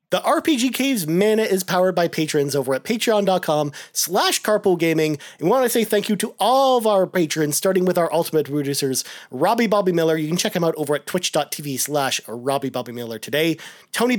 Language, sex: English, male